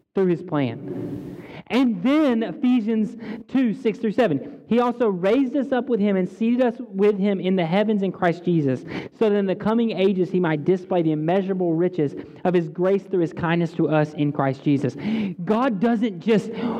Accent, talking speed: American, 195 wpm